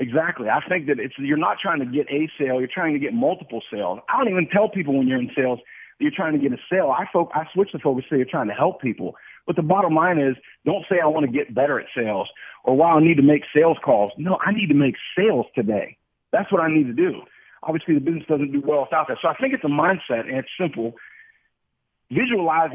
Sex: male